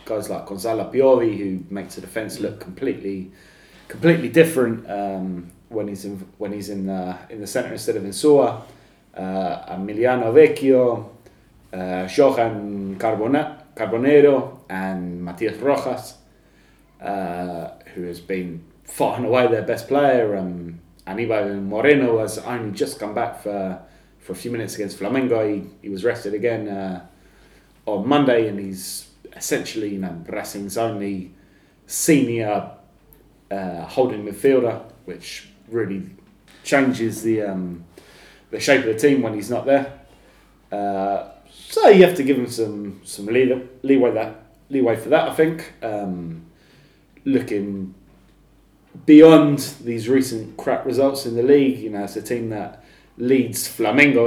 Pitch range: 95-125 Hz